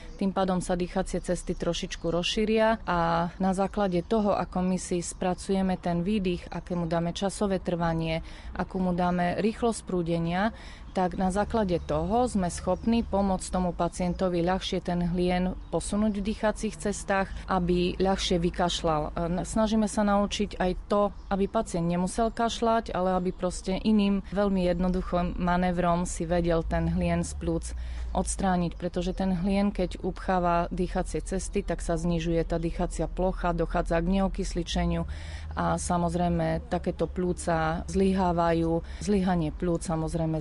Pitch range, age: 170-190 Hz, 30-49